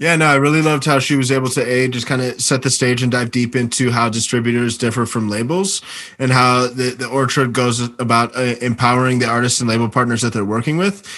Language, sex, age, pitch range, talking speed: English, male, 20-39, 115-135 Hz, 230 wpm